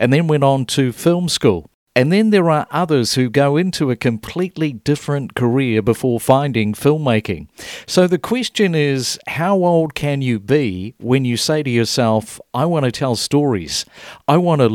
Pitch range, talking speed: 115-150 Hz, 180 wpm